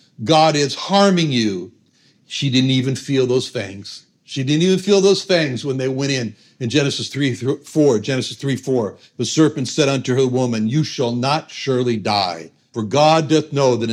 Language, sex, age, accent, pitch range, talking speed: English, male, 60-79, American, 120-160 Hz, 170 wpm